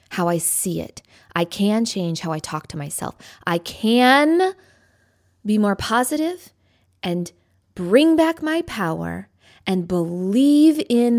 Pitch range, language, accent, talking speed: 155-210 Hz, English, American, 135 wpm